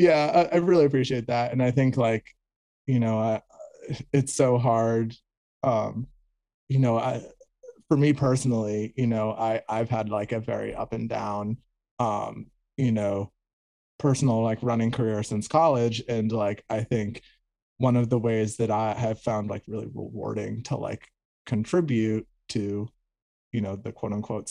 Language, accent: English, American